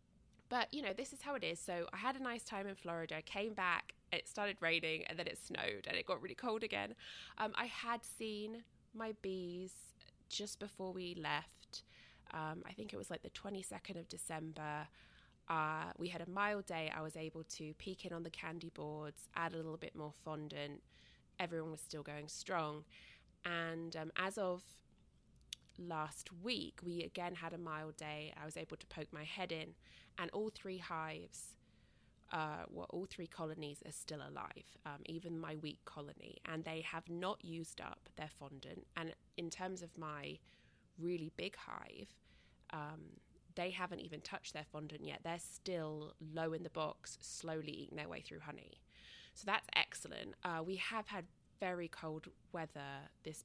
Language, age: English, 20-39